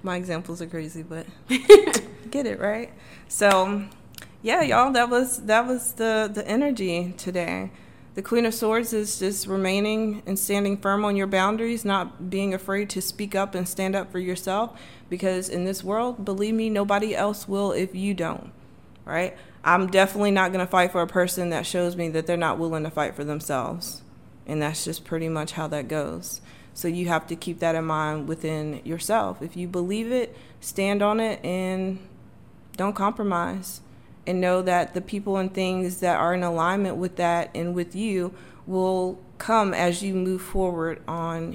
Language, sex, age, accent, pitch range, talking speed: English, female, 20-39, American, 170-200 Hz, 180 wpm